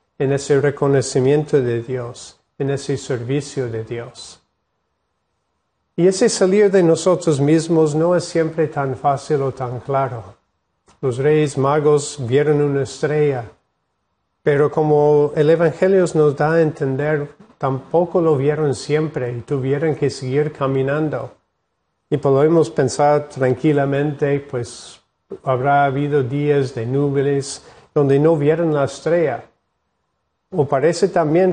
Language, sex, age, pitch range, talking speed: Spanish, male, 50-69, 135-155 Hz, 125 wpm